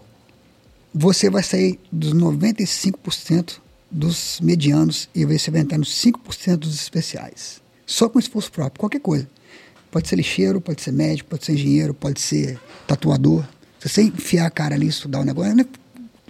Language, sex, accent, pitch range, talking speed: Portuguese, male, Brazilian, 150-225 Hz, 160 wpm